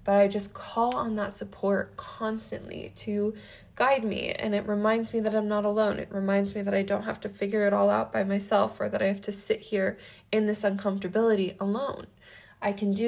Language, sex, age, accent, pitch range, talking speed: English, female, 10-29, American, 190-215 Hz, 215 wpm